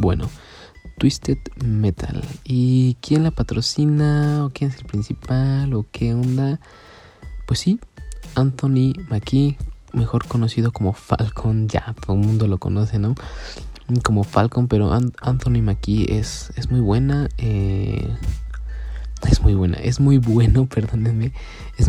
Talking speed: 130 wpm